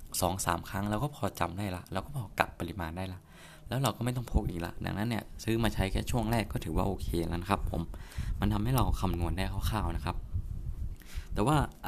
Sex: male